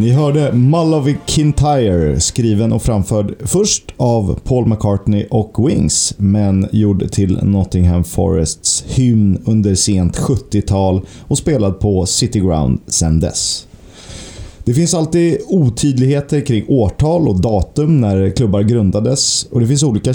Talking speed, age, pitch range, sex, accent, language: 130 wpm, 30-49, 95-125 Hz, male, native, Swedish